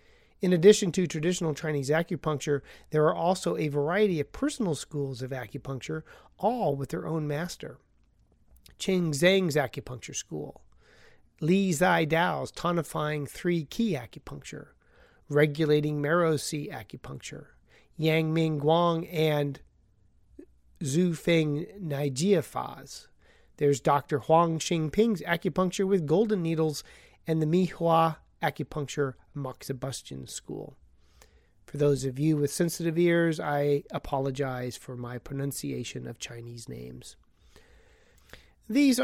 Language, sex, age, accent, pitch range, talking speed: English, male, 30-49, American, 140-175 Hz, 115 wpm